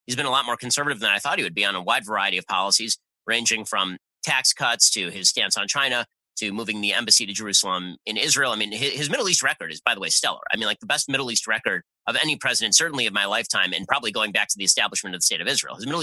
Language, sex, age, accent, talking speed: English, male, 30-49, American, 280 wpm